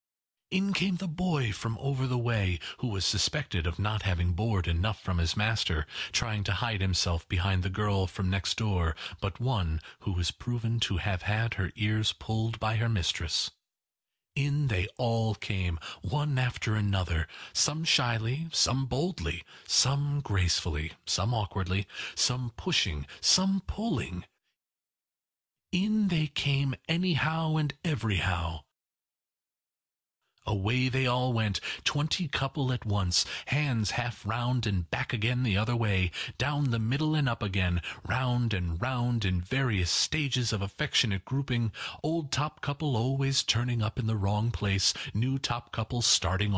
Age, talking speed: 40-59, 145 wpm